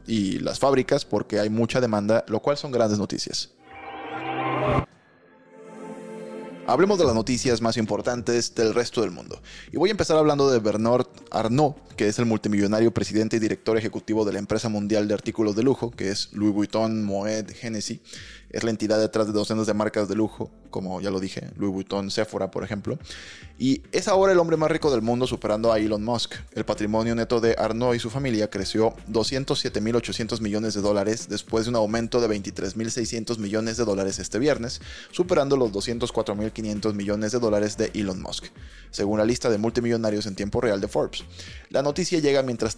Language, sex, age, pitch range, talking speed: Spanish, male, 20-39, 105-120 Hz, 190 wpm